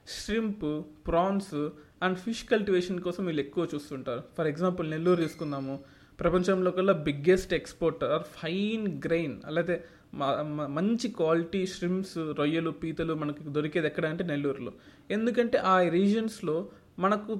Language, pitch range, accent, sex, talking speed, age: Telugu, 155-195 Hz, native, male, 120 wpm, 20-39